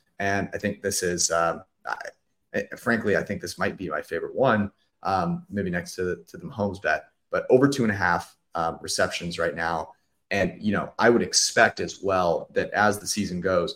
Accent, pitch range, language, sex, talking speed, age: American, 100-130 Hz, English, male, 210 wpm, 30-49